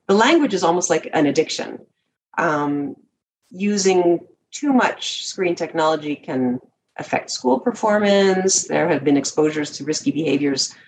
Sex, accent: female, American